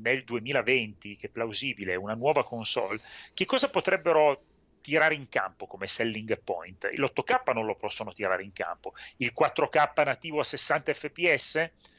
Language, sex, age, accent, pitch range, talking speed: Italian, male, 30-49, native, 105-150 Hz, 160 wpm